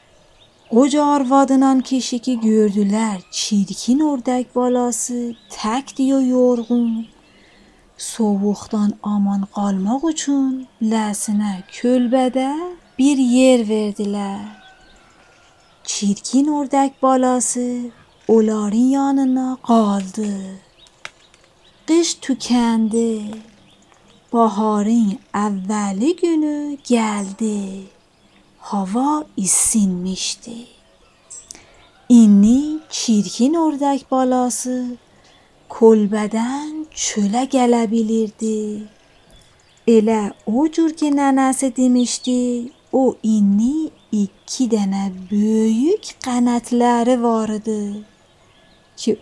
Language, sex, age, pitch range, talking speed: Persian, female, 40-59, 210-260 Hz, 65 wpm